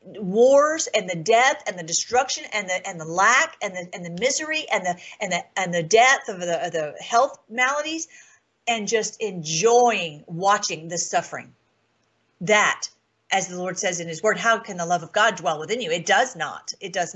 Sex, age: female, 40-59